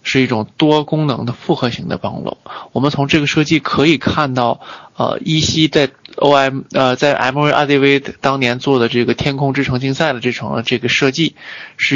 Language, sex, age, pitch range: Chinese, male, 20-39, 120-140 Hz